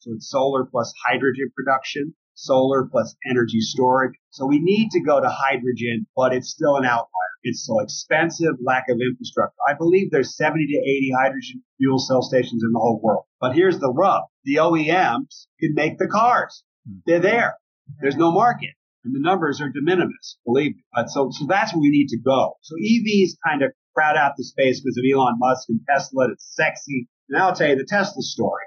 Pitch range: 125-165 Hz